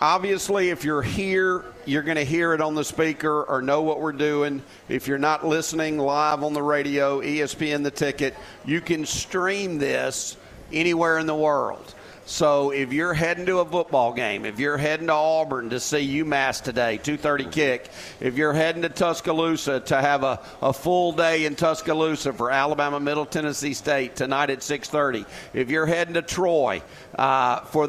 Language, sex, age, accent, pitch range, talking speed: English, male, 50-69, American, 135-160 Hz, 180 wpm